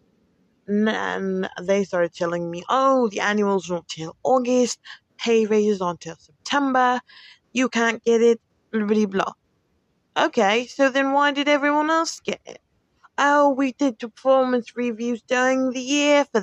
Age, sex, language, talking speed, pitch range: 20-39, female, English, 155 wpm, 180-250 Hz